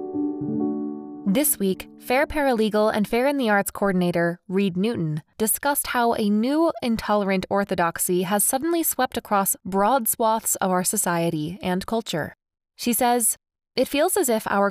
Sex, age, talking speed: female, 20-39, 145 wpm